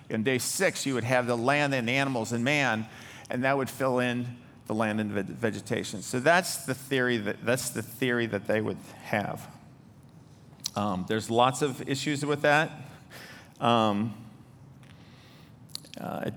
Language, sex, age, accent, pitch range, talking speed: English, male, 50-69, American, 120-145 Hz, 160 wpm